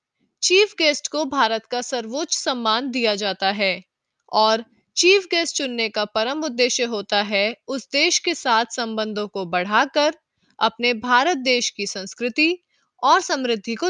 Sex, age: female, 20-39